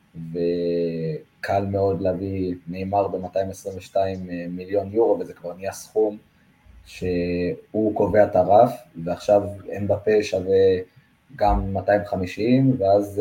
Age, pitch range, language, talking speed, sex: 20-39, 90-115 Hz, Hebrew, 90 wpm, male